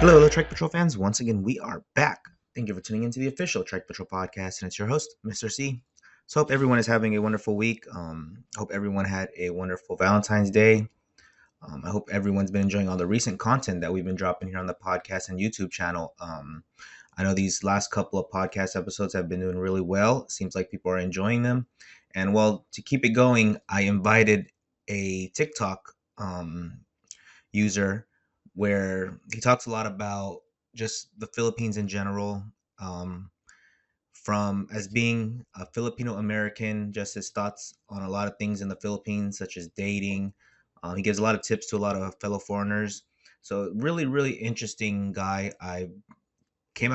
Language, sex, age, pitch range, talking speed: English, male, 20-39, 95-110 Hz, 185 wpm